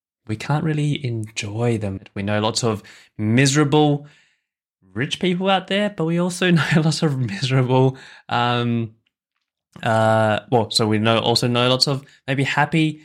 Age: 10-29